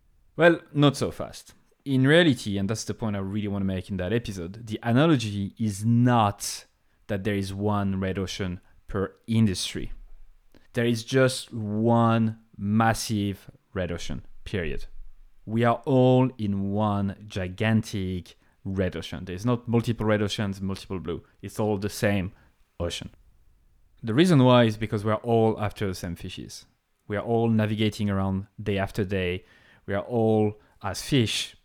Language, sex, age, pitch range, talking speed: English, male, 30-49, 95-115 Hz, 155 wpm